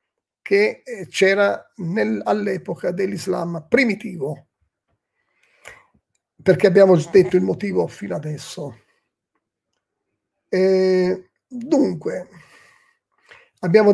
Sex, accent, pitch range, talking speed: male, native, 165-205 Hz, 60 wpm